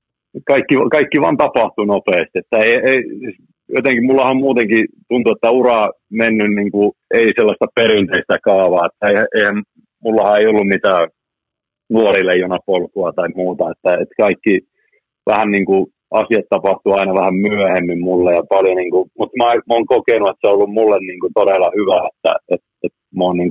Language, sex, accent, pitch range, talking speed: Finnish, male, native, 90-110 Hz, 170 wpm